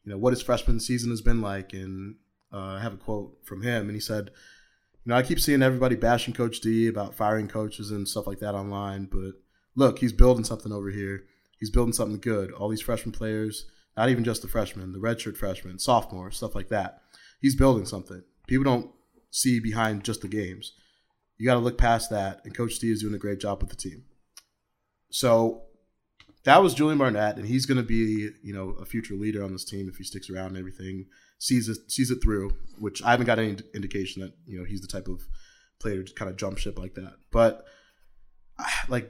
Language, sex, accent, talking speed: English, male, American, 220 wpm